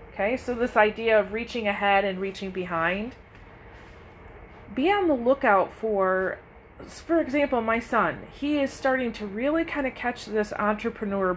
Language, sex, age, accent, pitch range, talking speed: English, female, 30-49, American, 185-230 Hz, 155 wpm